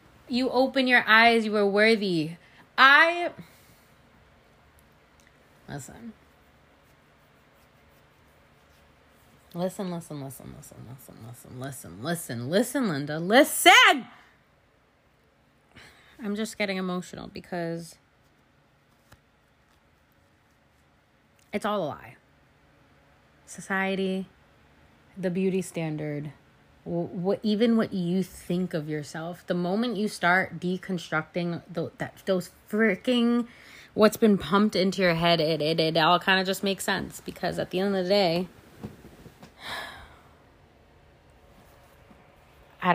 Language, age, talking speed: English, 30-49, 100 wpm